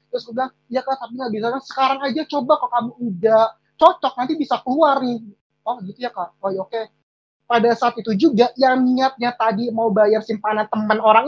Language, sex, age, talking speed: Indonesian, male, 20-39, 200 wpm